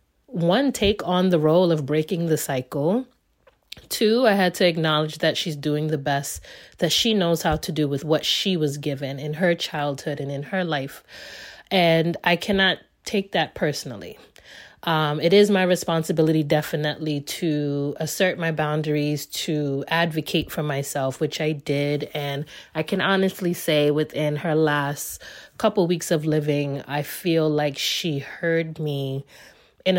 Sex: female